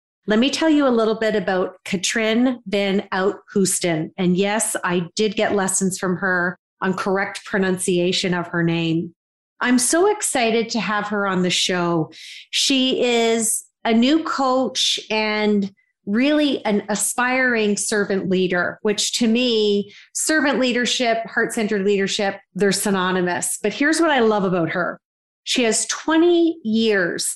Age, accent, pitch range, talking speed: 40-59, American, 190-235 Hz, 145 wpm